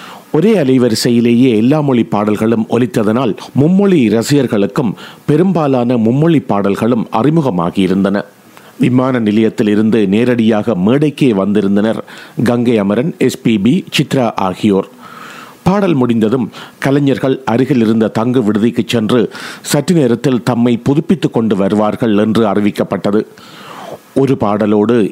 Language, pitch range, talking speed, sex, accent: Tamil, 105-135 Hz, 95 wpm, male, native